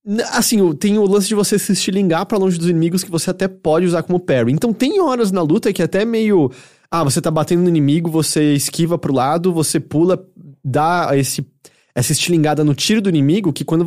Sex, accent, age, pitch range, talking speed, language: male, Brazilian, 20-39, 145-200 Hz, 210 wpm, English